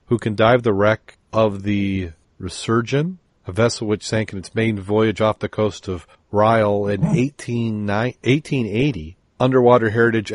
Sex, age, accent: male, 40-59, American